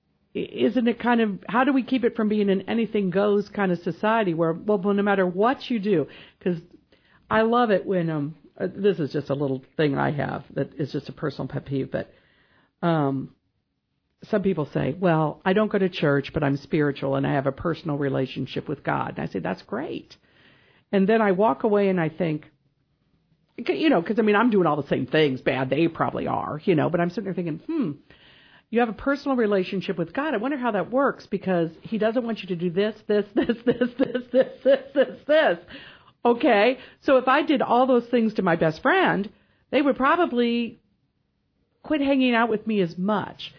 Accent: American